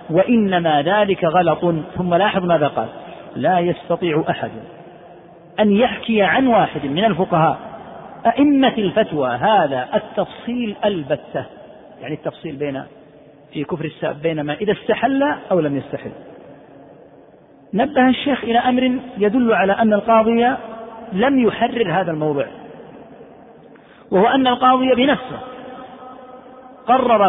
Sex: male